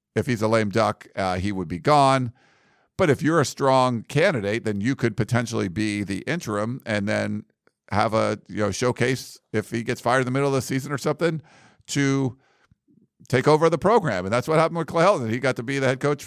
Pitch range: 105-140 Hz